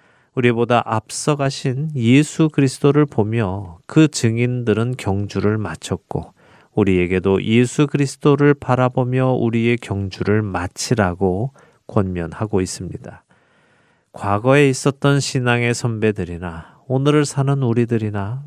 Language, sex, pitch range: Korean, male, 100-130 Hz